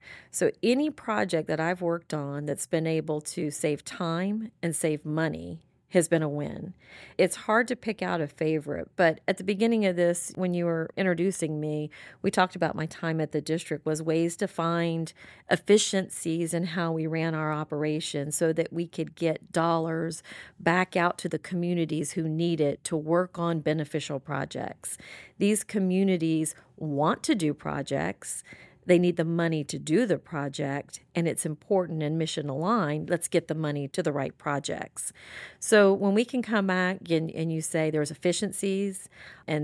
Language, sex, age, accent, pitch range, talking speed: English, female, 40-59, American, 155-185 Hz, 175 wpm